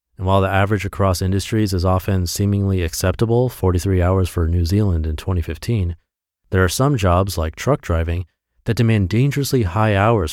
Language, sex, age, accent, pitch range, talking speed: English, male, 30-49, American, 90-125 Hz, 170 wpm